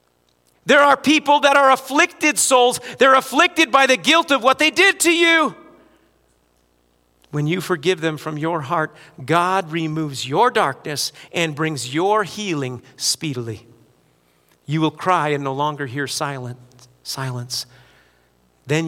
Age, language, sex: 40-59, English, male